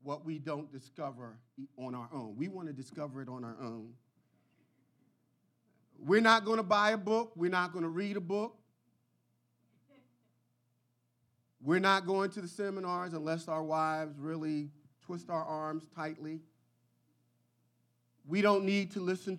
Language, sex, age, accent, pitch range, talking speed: English, male, 40-59, American, 115-160 Hz, 150 wpm